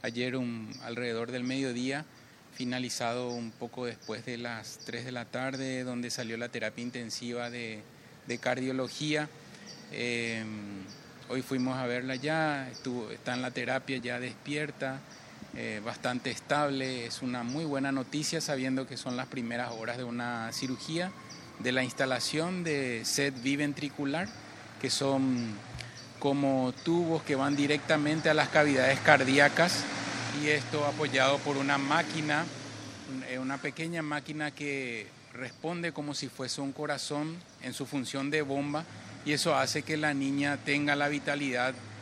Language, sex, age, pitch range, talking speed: Spanish, male, 30-49, 125-150 Hz, 145 wpm